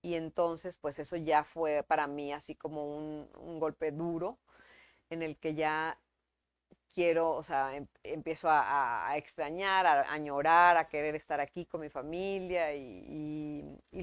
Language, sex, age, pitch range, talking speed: Spanish, female, 40-59, 150-190 Hz, 165 wpm